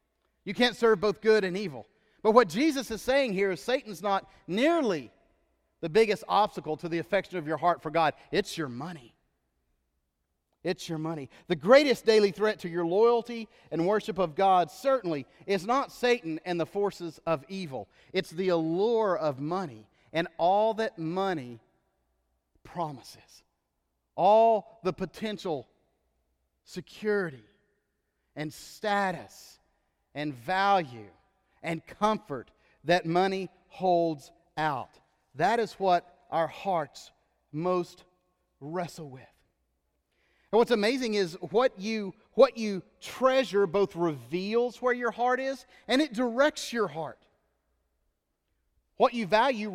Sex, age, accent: male, 40-59, American